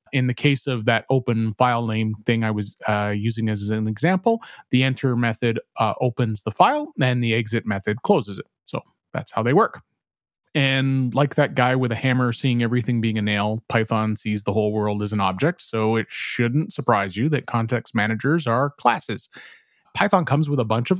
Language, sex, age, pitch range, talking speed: English, male, 30-49, 110-130 Hz, 200 wpm